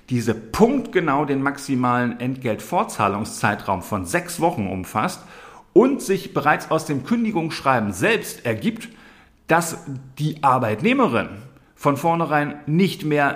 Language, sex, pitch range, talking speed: German, male, 115-155 Hz, 110 wpm